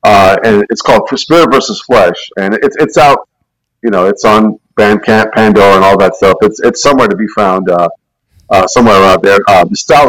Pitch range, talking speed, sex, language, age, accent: 100-115 Hz, 200 wpm, male, English, 40-59, American